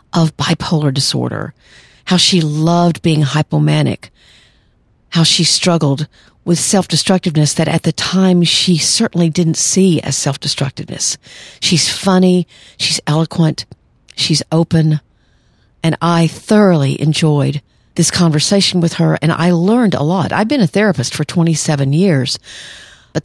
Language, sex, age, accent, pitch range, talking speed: English, female, 50-69, American, 150-180 Hz, 130 wpm